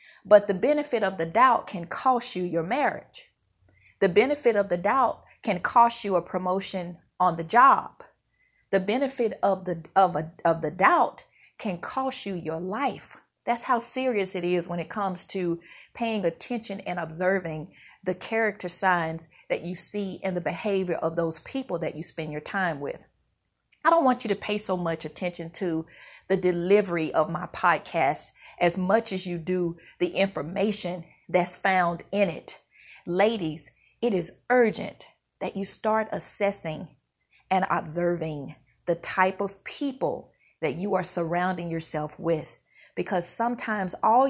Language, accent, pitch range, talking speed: English, American, 170-220 Hz, 160 wpm